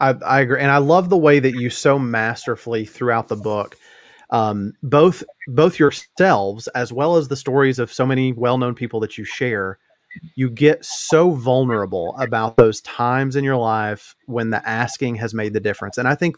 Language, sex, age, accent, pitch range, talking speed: English, male, 30-49, American, 120-150 Hz, 190 wpm